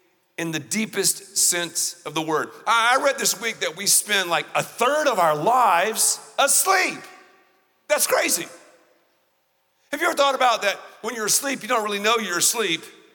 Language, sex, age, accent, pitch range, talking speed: English, male, 50-69, American, 170-225 Hz, 175 wpm